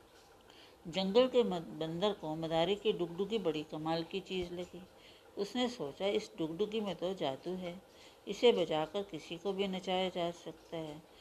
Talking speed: 155 wpm